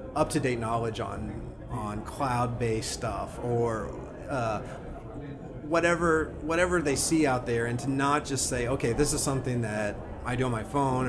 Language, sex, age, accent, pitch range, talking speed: English, male, 30-49, American, 115-140 Hz, 155 wpm